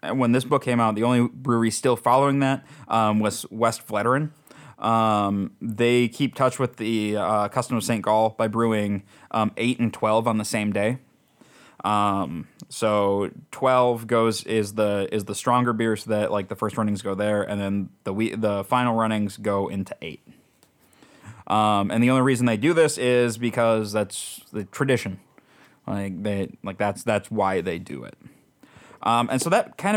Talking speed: 180 wpm